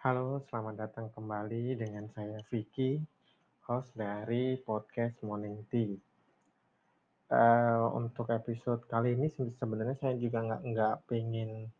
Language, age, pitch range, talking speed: Indonesian, 20-39, 110-120 Hz, 115 wpm